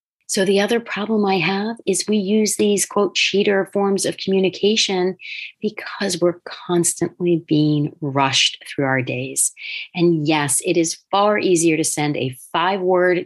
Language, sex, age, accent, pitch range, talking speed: English, female, 40-59, American, 160-200 Hz, 150 wpm